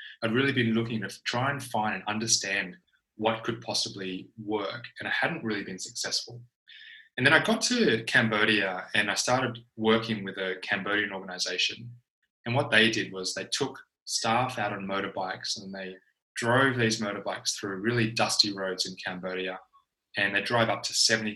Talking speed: 175 wpm